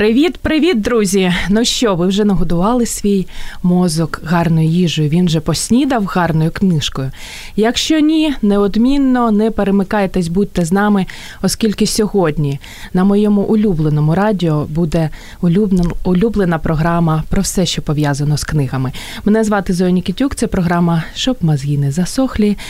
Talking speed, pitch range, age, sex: 135 wpm, 150-205 Hz, 20-39, female